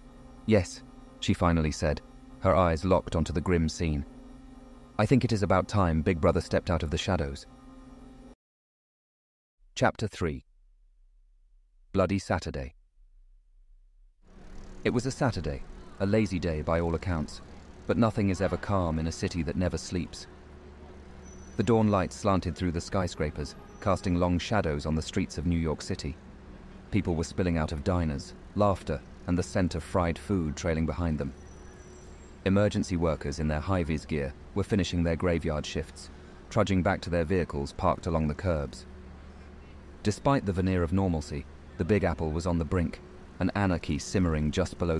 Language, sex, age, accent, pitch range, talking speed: English, male, 30-49, British, 75-95 Hz, 160 wpm